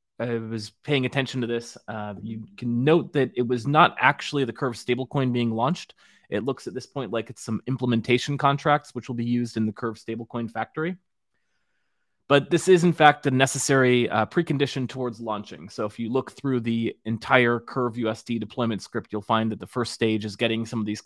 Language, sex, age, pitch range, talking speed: English, male, 20-39, 110-135 Hz, 205 wpm